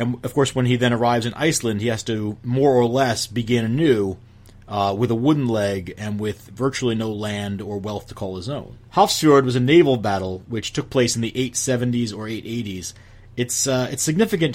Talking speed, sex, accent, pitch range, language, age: 205 wpm, male, American, 110-135 Hz, English, 30-49